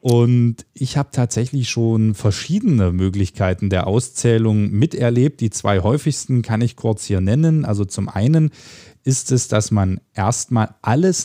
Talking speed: 145 wpm